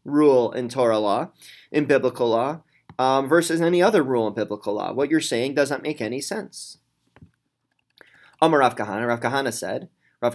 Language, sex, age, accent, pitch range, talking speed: English, male, 20-39, American, 130-180 Hz, 170 wpm